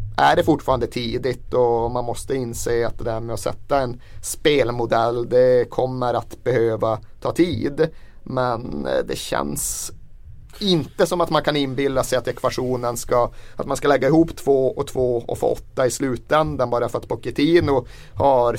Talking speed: 170 wpm